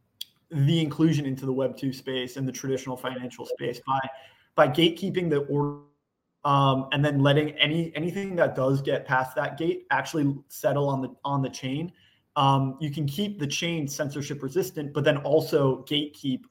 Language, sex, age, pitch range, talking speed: English, male, 20-39, 130-150 Hz, 175 wpm